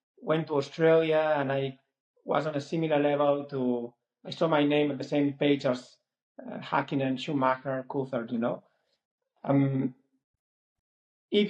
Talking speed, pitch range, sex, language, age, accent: 145 wpm, 140-180 Hz, male, English, 30-49, Spanish